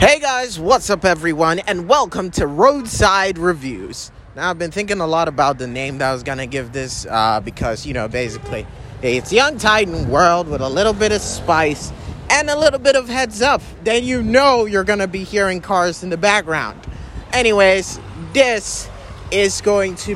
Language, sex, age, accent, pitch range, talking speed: English, male, 30-49, American, 135-210 Hz, 190 wpm